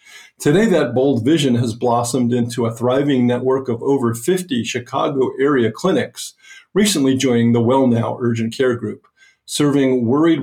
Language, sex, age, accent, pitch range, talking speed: English, male, 50-69, American, 120-145 Hz, 140 wpm